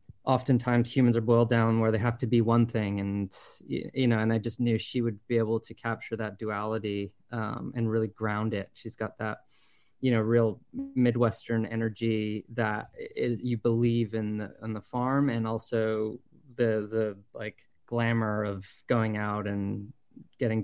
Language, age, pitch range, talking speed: English, 20-39, 110-130 Hz, 170 wpm